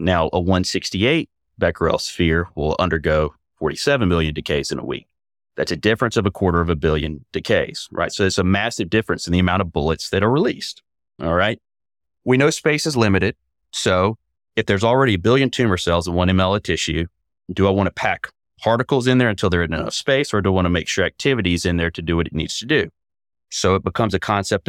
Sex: male